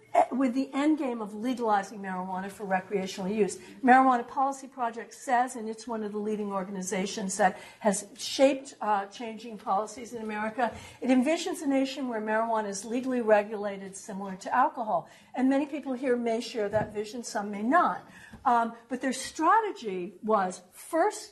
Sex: female